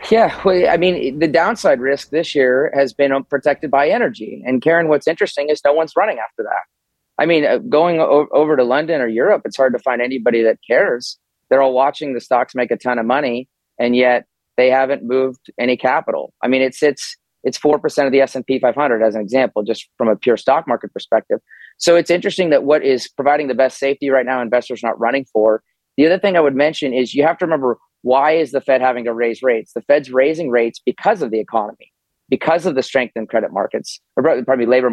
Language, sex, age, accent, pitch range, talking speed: English, male, 30-49, American, 120-145 Hz, 225 wpm